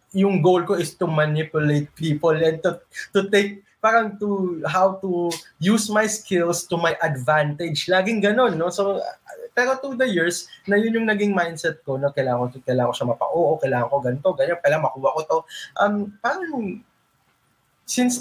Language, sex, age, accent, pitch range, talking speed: English, male, 20-39, Filipino, 145-195 Hz, 180 wpm